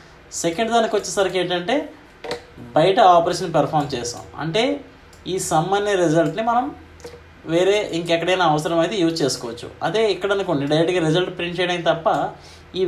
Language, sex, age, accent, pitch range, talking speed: Telugu, male, 20-39, native, 115-180 Hz, 125 wpm